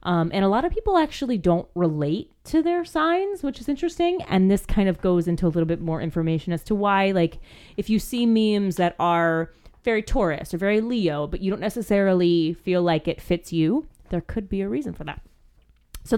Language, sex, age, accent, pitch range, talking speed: English, female, 30-49, American, 165-220 Hz, 215 wpm